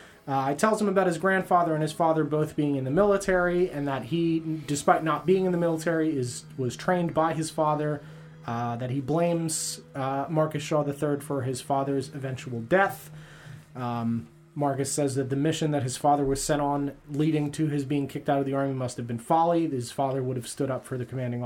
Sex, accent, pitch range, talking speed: male, American, 135-165 Hz, 215 wpm